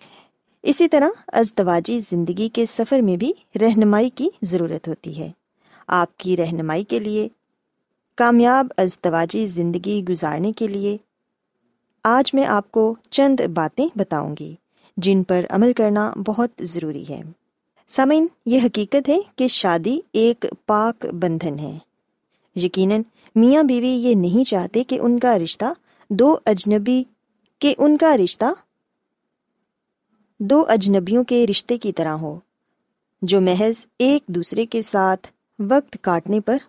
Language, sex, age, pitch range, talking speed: Urdu, female, 20-39, 185-250 Hz, 130 wpm